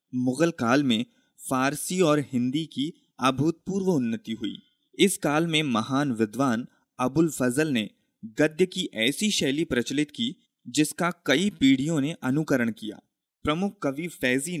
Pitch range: 125-175 Hz